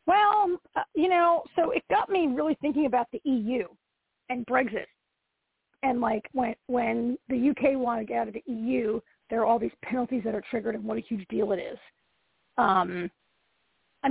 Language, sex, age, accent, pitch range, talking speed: English, female, 40-59, American, 230-305 Hz, 185 wpm